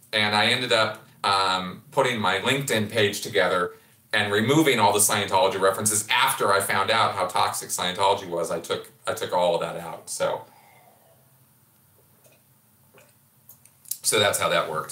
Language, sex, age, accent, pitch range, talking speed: English, male, 40-59, American, 105-130 Hz, 155 wpm